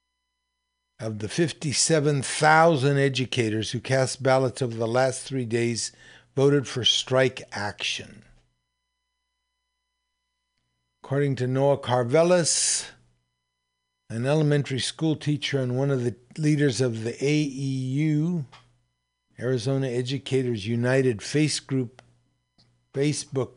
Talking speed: 90 wpm